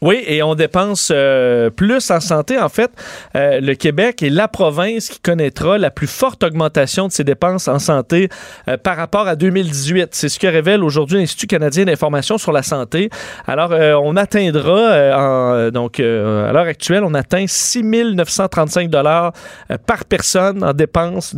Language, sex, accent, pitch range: French, male, Canadian, 145-185 Hz